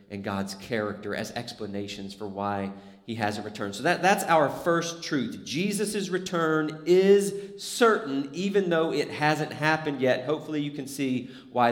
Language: English